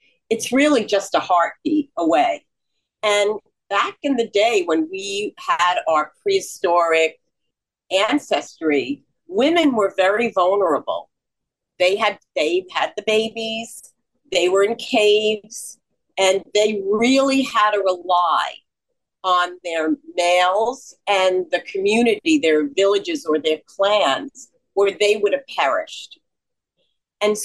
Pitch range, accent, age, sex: 190-275 Hz, American, 50-69, female